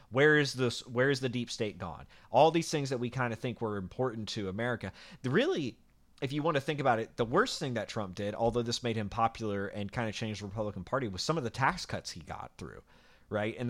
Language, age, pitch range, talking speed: English, 30-49, 95-125 Hz, 260 wpm